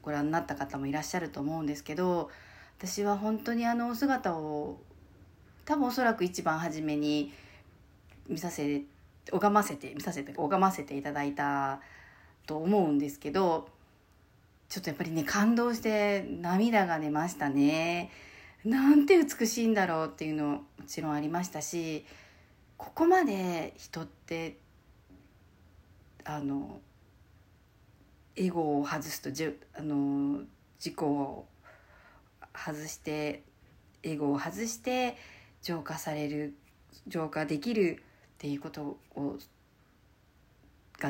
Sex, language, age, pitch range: female, Japanese, 40-59, 140-195 Hz